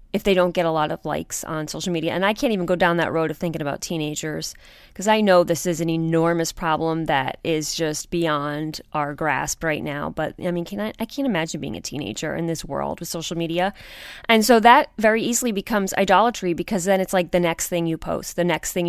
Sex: female